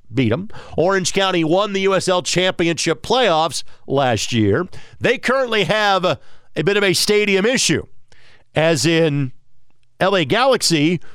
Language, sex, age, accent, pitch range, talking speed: English, male, 50-69, American, 135-190 Hz, 135 wpm